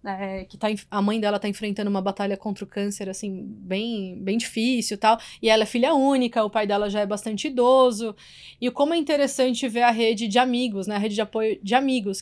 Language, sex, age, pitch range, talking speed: Portuguese, female, 20-39, 215-290 Hz, 230 wpm